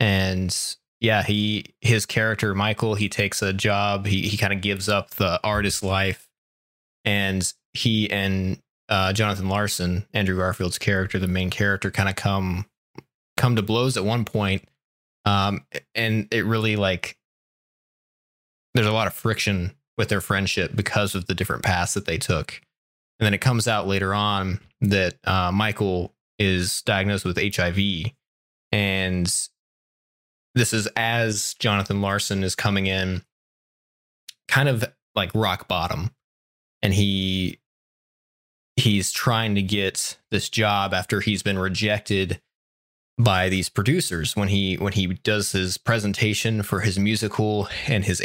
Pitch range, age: 95-110 Hz, 20-39